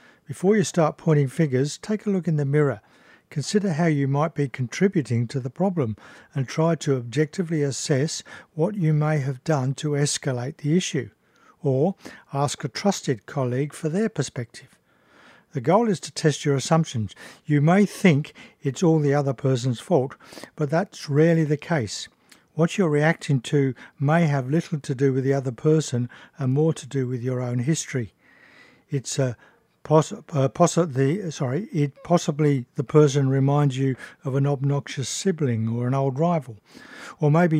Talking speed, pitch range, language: 170 wpm, 135-160 Hz, English